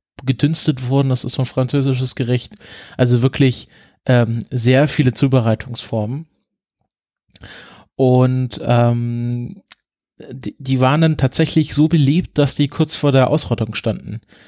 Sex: male